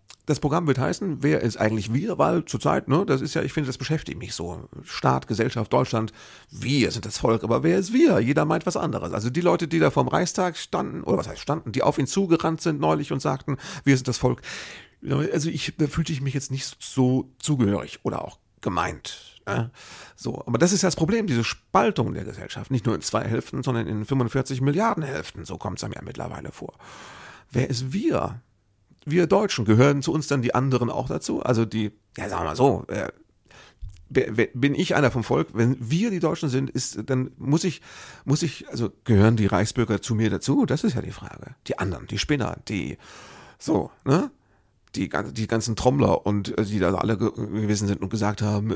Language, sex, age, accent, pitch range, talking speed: German, male, 40-59, German, 110-155 Hz, 210 wpm